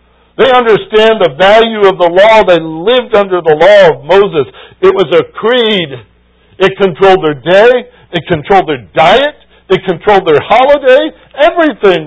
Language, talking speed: English, 155 wpm